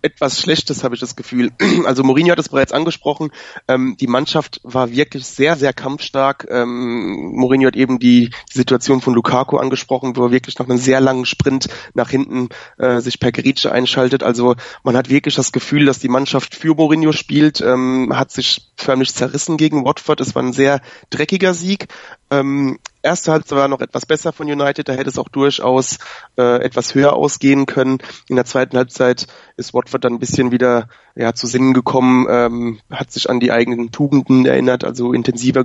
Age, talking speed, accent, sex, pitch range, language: 20-39, 190 wpm, German, male, 125-140 Hz, German